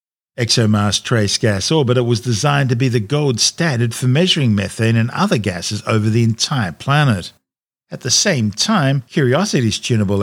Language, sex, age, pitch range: English, male, 50-69, 110-140 Hz